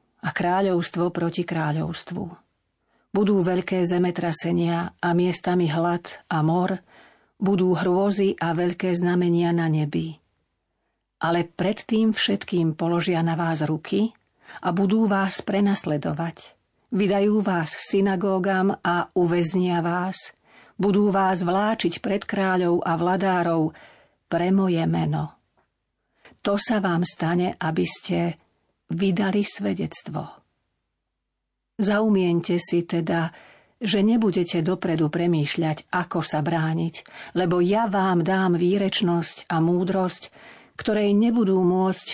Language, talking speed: Slovak, 105 wpm